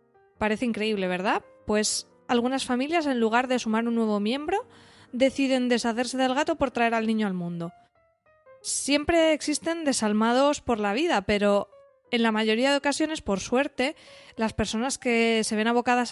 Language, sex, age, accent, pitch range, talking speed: Spanish, female, 20-39, Spanish, 225-275 Hz, 160 wpm